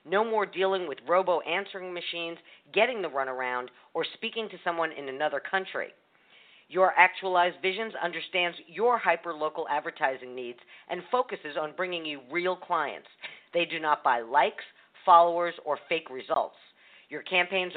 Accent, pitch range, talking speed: American, 155-210 Hz, 140 wpm